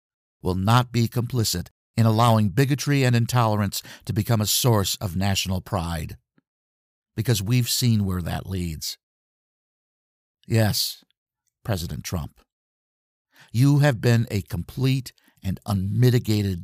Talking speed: 115 wpm